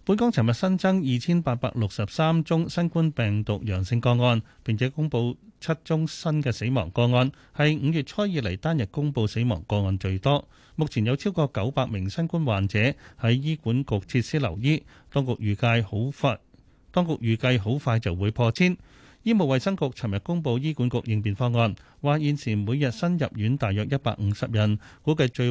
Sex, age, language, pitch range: male, 30-49, Chinese, 110-150 Hz